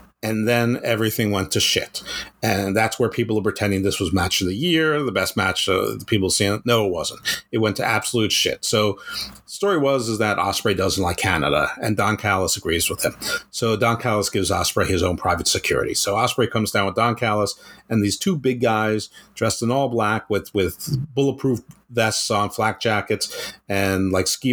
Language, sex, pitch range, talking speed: English, male, 100-130 Hz, 205 wpm